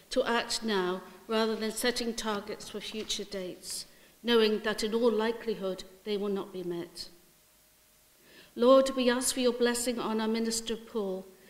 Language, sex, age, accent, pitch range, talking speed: English, female, 60-79, British, 190-240 Hz, 155 wpm